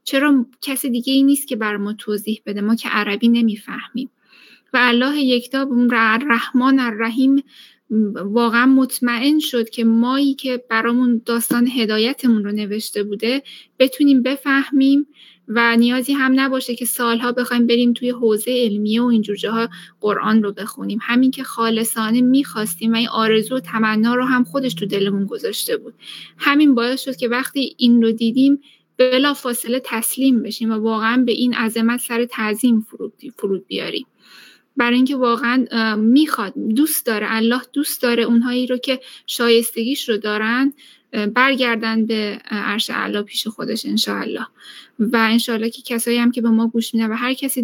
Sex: female